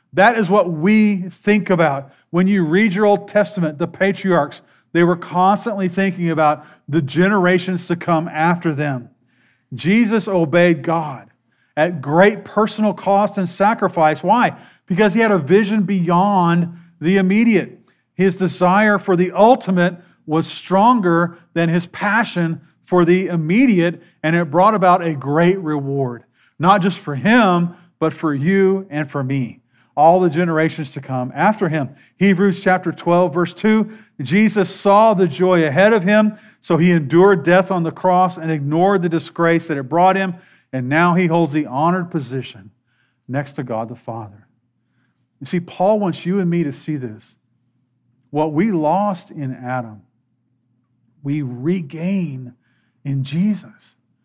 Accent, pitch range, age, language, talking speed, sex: American, 145-190 Hz, 40-59, English, 155 wpm, male